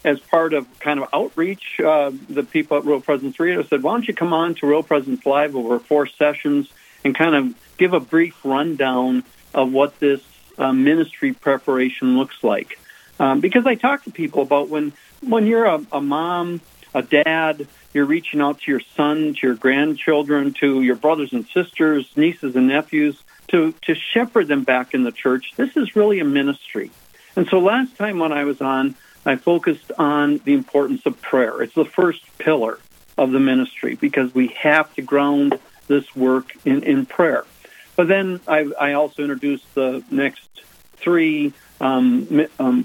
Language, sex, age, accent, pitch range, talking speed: English, male, 50-69, American, 135-175 Hz, 180 wpm